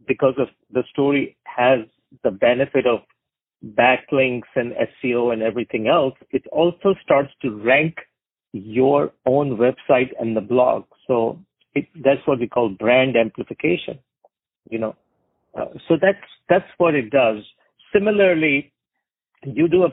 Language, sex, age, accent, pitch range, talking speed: English, male, 50-69, Indian, 120-155 Hz, 140 wpm